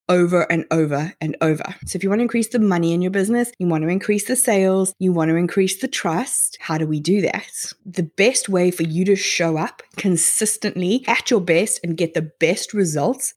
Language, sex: English, female